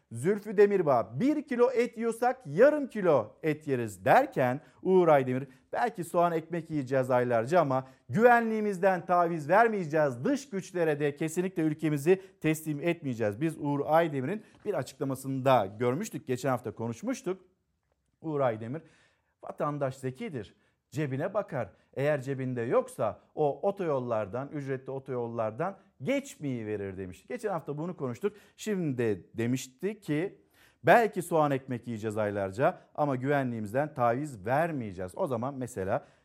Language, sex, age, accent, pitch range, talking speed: Turkish, male, 50-69, native, 125-170 Hz, 125 wpm